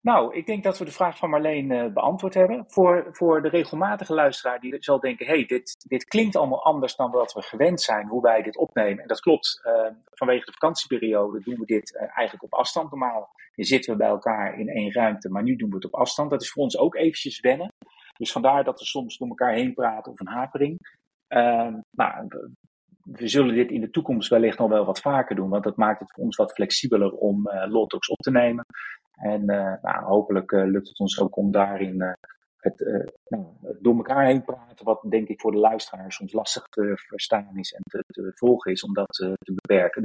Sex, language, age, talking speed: male, Dutch, 30-49, 230 wpm